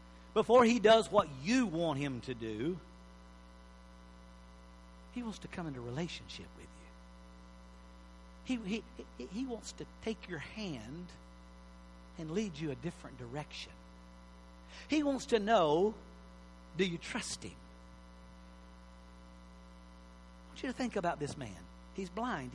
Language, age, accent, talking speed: English, 50-69, American, 135 wpm